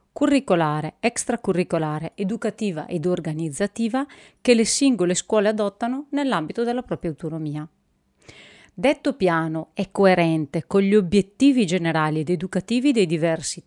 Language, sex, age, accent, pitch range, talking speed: Italian, female, 40-59, native, 170-230 Hz, 115 wpm